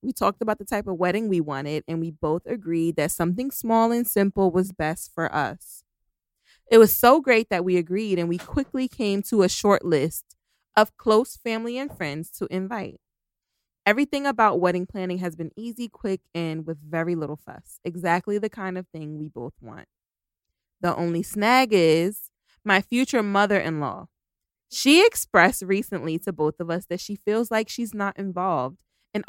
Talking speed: 180 wpm